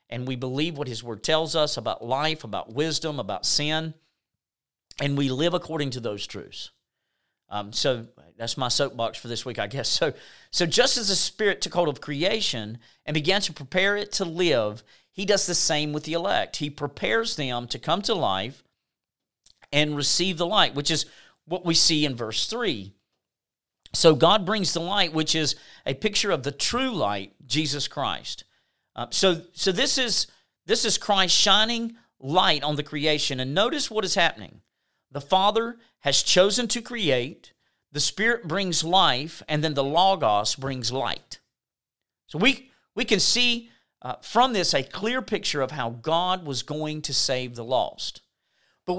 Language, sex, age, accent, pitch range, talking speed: English, male, 40-59, American, 135-190 Hz, 175 wpm